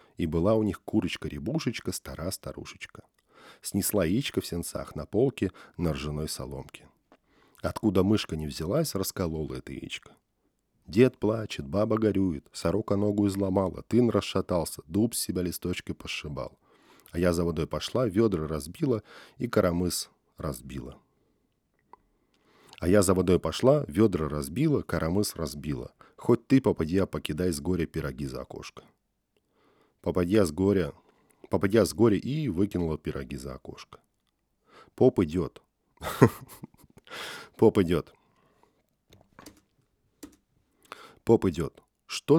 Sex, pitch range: male, 80-105 Hz